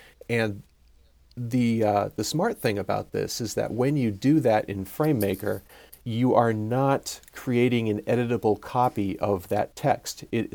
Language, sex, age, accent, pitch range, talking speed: English, male, 40-59, American, 100-125 Hz, 155 wpm